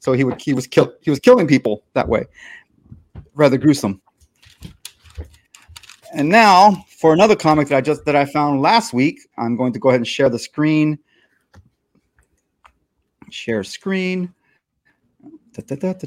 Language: English